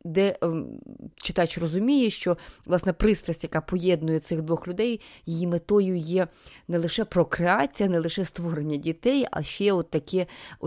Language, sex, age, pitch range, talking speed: Ukrainian, female, 30-49, 150-185 Hz, 140 wpm